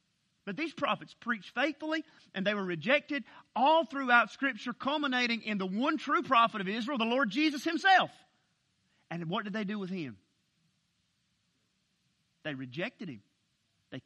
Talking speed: 150 wpm